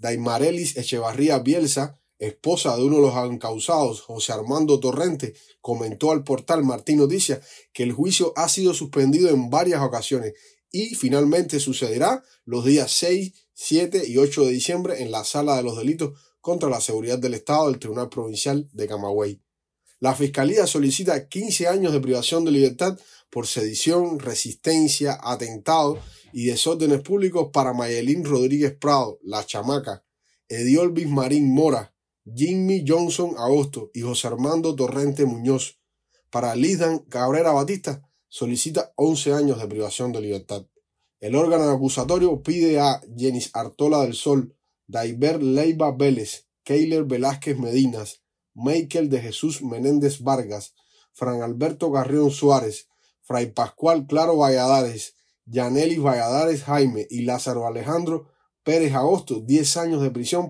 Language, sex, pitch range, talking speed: Spanish, male, 120-160 Hz, 135 wpm